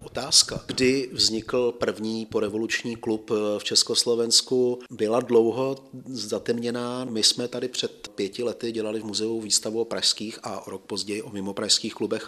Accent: native